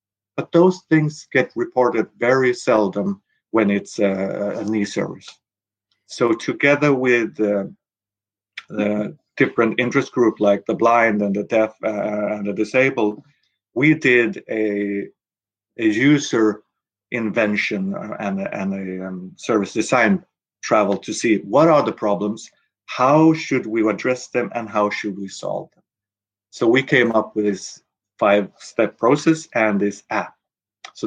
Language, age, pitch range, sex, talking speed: English, 50-69, 105-150 Hz, male, 140 wpm